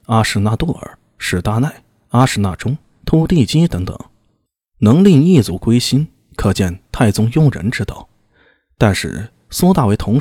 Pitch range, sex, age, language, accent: 100-140 Hz, male, 20-39, Chinese, native